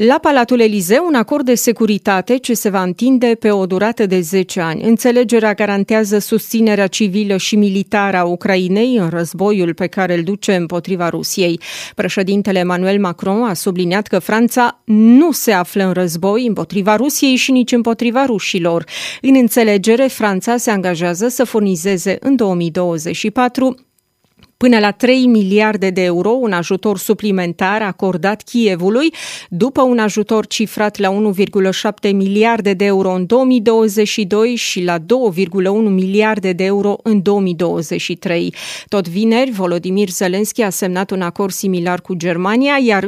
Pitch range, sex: 190-230 Hz, female